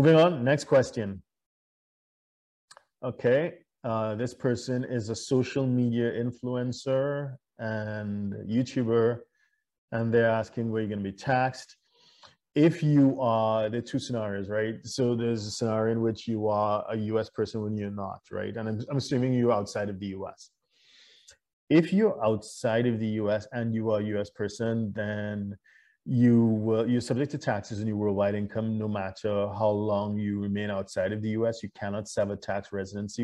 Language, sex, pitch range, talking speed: English, male, 105-125 Hz, 170 wpm